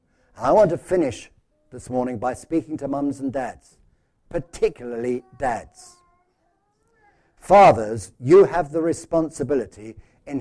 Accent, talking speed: British, 115 wpm